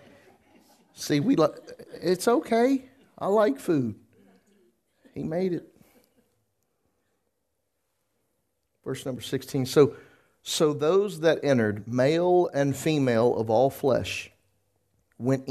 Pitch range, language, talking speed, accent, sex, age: 100-140 Hz, English, 100 wpm, American, male, 50-69